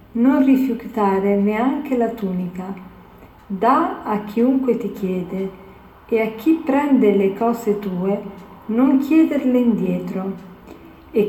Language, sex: Italian, female